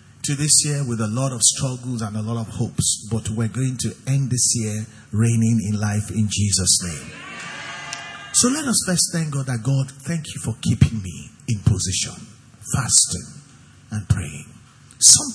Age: 50-69